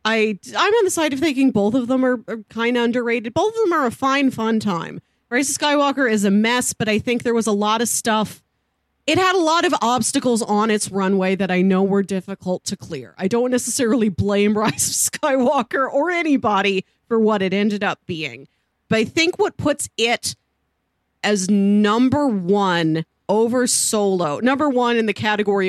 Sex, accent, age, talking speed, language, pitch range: female, American, 30-49, 195 wpm, English, 200-260 Hz